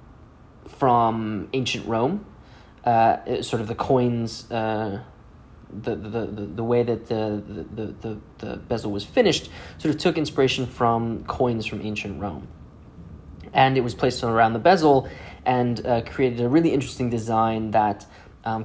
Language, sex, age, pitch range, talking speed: English, male, 20-39, 105-125 Hz, 155 wpm